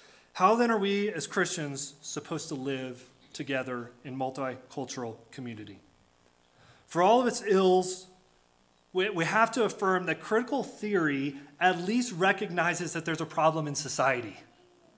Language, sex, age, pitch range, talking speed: English, male, 30-49, 185-260 Hz, 135 wpm